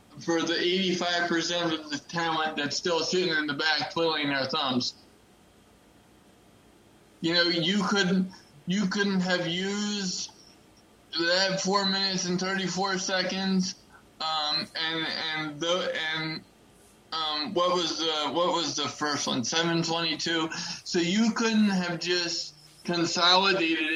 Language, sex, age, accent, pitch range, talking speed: English, male, 20-39, American, 155-185 Hz, 125 wpm